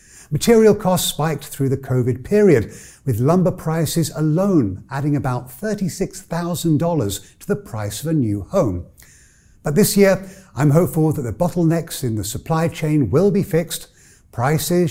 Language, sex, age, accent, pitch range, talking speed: English, male, 50-69, British, 125-170 Hz, 150 wpm